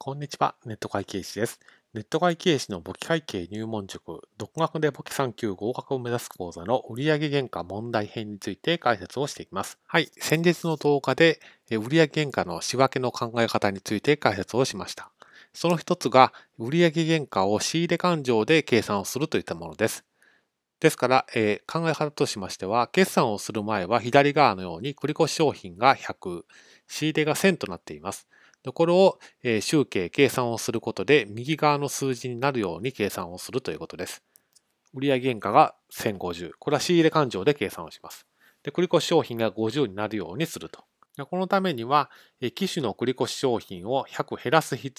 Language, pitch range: Japanese, 115-155 Hz